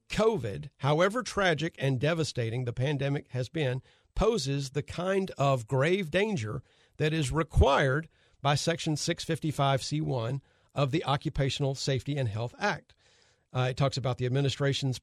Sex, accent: male, American